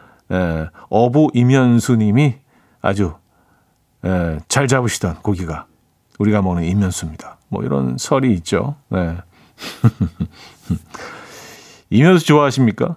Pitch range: 100-140 Hz